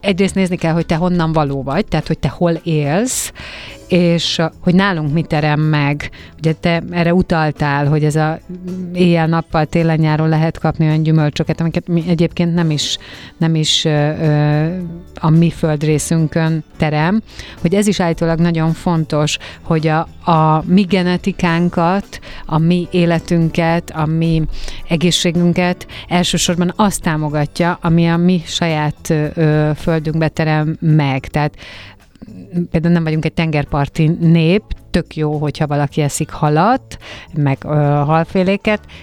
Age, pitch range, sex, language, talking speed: 30-49, 150-170 Hz, female, Hungarian, 135 wpm